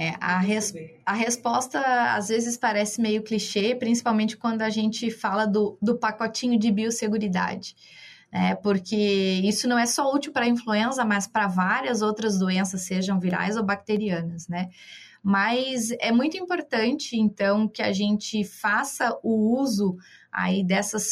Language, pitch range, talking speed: Portuguese, 195-235 Hz, 145 wpm